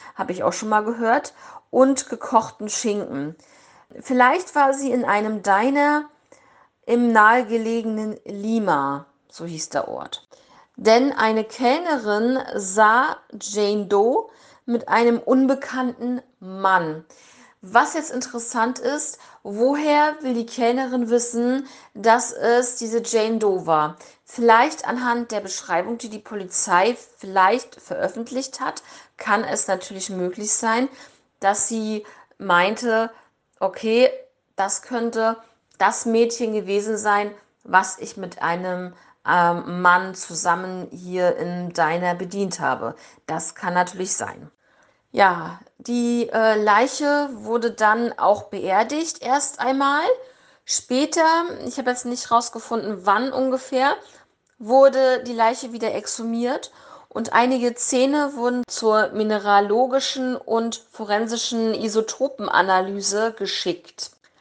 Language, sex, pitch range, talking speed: German, female, 205-255 Hz, 110 wpm